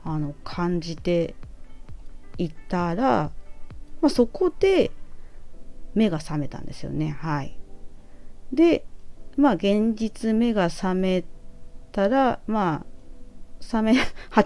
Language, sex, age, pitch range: Japanese, female, 30-49, 155-210 Hz